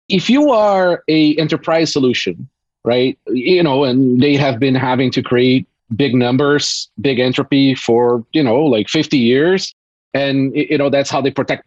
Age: 30-49